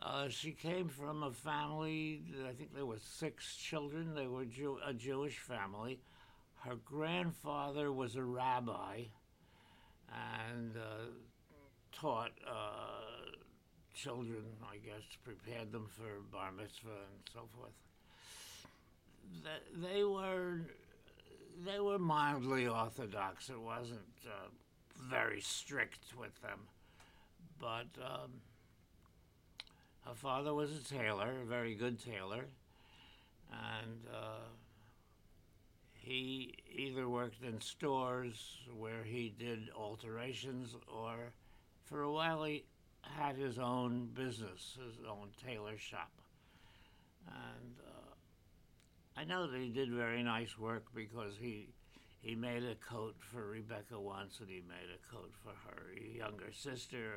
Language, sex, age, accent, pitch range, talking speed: English, male, 60-79, American, 110-130 Hz, 120 wpm